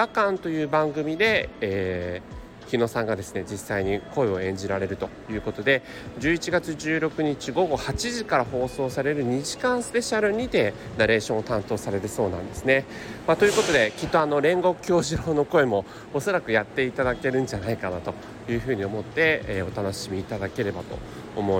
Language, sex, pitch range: Japanese, male, 105-160 Hz